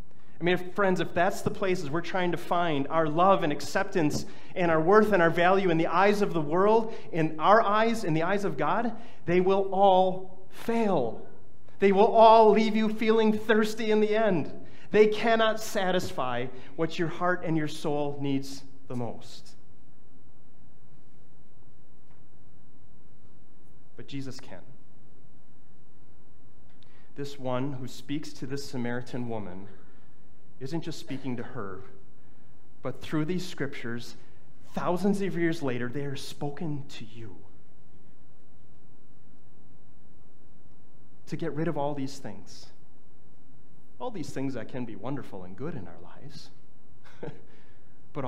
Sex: male